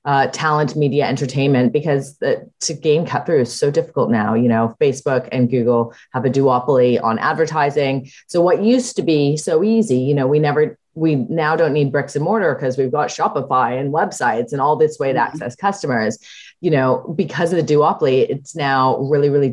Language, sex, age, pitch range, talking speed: English, female, 30-49, 130-180 Hz, 185 wpm